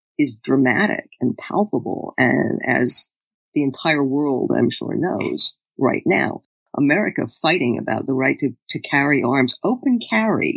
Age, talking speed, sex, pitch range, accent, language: 50-69, 140 wpm, female, 140-200 Hz, American, English